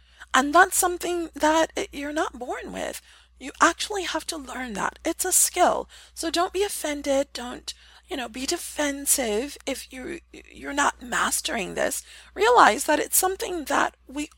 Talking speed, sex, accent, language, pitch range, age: 165 wpm, female, American, English, 255-355 Hz, 30-49